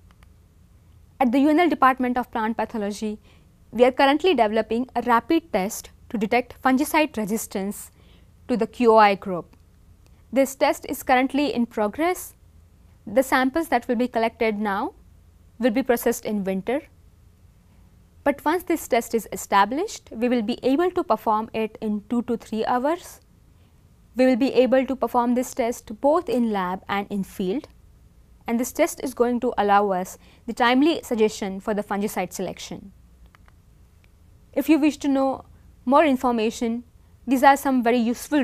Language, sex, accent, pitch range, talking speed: English, female, Indian, 195-260 Hz, 155 wpm